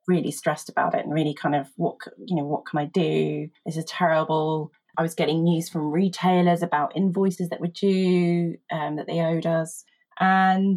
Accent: British